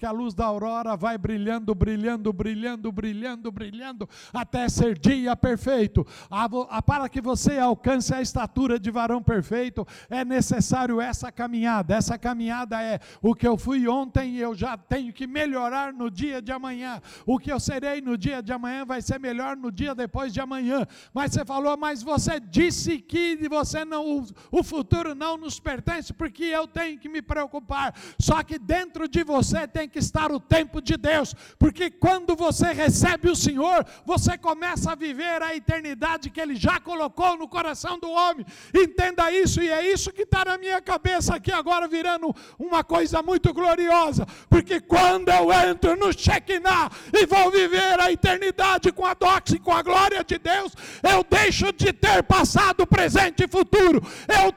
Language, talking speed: Portuguese, 180 wpm